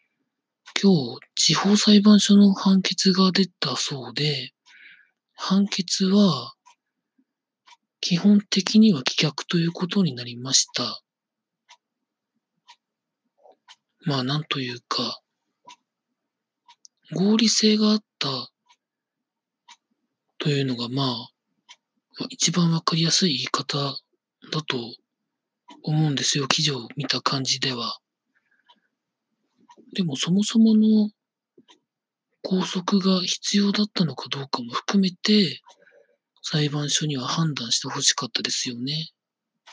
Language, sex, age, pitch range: Japanese, male, 40-59, 150-215 Hz